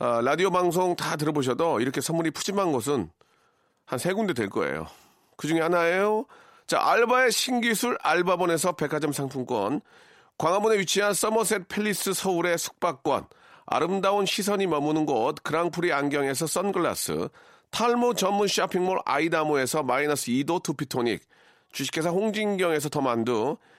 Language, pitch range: Korean, 155-205 Hz